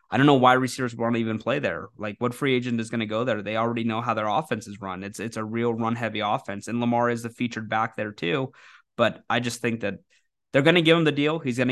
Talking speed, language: 285 wpm, English